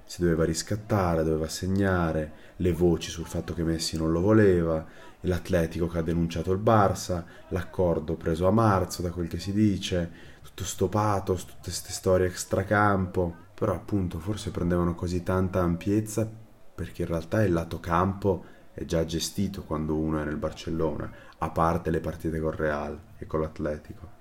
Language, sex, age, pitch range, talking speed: Italian, male, 30-49, 80-95 Hz, 160 wpm